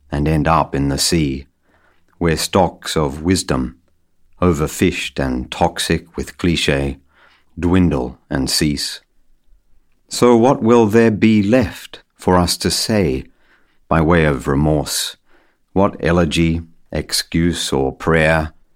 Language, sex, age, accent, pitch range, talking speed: English, male, 50-69, British, 75-95 Hz, 120 wpm